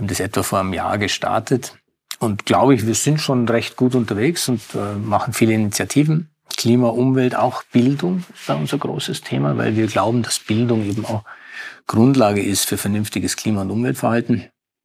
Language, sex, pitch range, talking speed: German, male, 100-120 Hz, 180 wpm